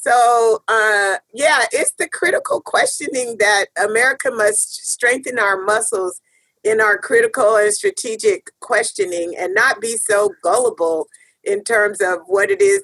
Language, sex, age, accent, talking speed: English, female, 40-59, American, 140 wpm